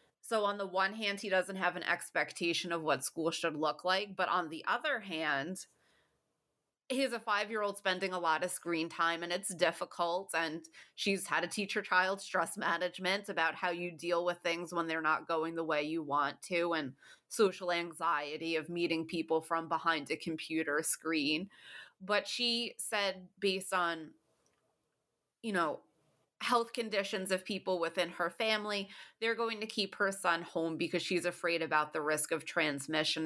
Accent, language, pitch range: American, English, 160-195 Hz